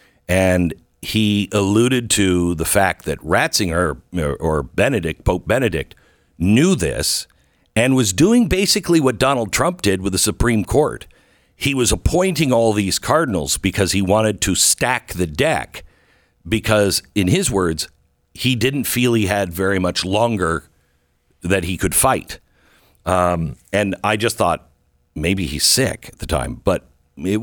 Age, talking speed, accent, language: 60-79, 150 wpm, American, English